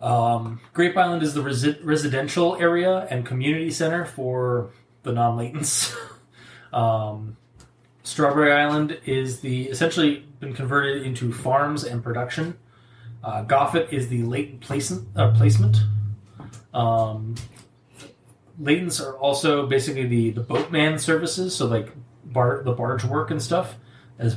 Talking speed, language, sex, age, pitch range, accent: 130 wpm, English, male, 20-39, 120-155 Hz, American